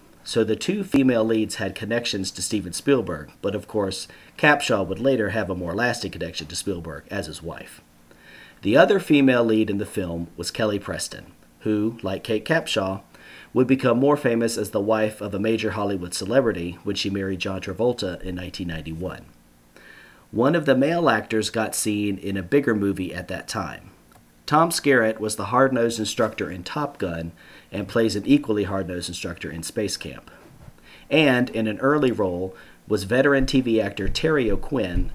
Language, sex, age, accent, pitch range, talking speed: English, male, 40-59, American, 95-115 Hz, 175 wpm